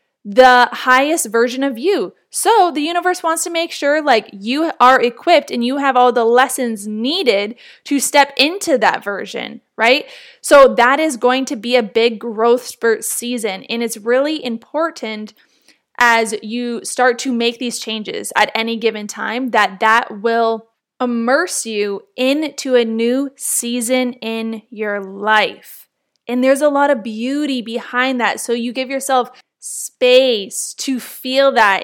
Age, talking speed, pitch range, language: 20-39, 155 wpm, 225-275 Hz, English